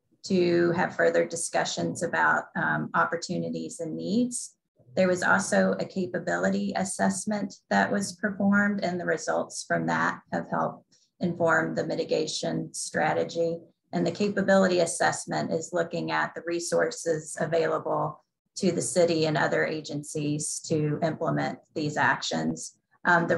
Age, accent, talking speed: 30-49, American, 130 wpm